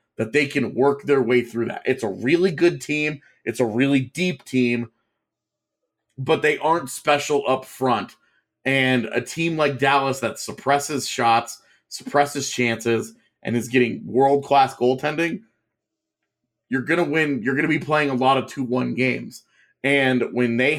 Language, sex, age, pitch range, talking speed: English, male, 30-49, 125-150 Hz, 160 wpm